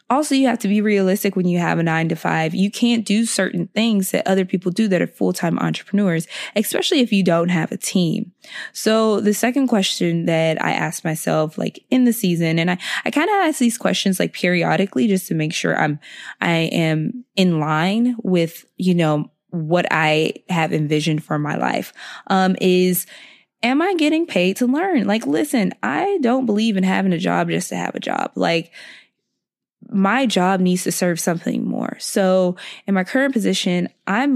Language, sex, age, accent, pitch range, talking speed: English, female, 20-39, American, 175-220 Hz, 190 wpm